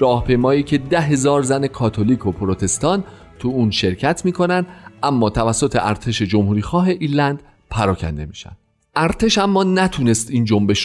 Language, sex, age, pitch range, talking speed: Persian, male, 40-59, 105-145 Hz, 135 wpm